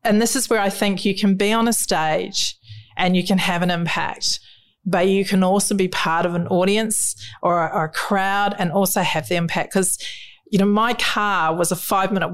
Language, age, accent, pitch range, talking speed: English, 40-59, Australian, 165-200 Hz, 215 wpm